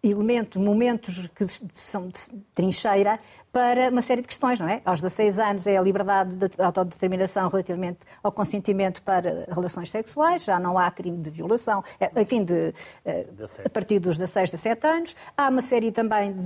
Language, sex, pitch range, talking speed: Portuguese, female, 185-230 Hz, 160 wpm